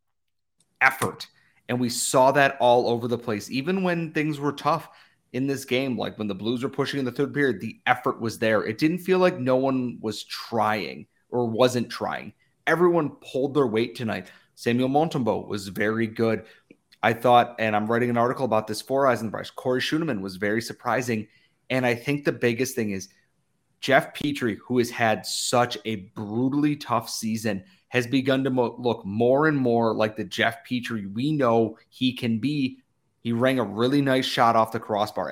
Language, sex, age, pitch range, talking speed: English, male, 30-49, 110-135 Hz, 185 wpm